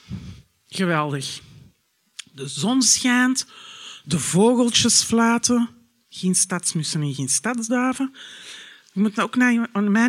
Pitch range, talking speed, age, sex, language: 175-250 Hz, 95 wpm, 50-69, male, Dutch